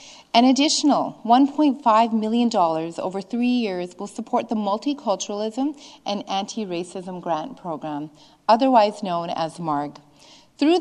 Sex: female